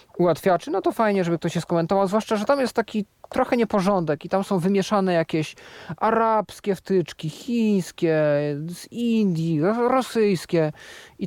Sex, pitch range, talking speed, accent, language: male, 160-205 Hz, 145 wpm, native, Polish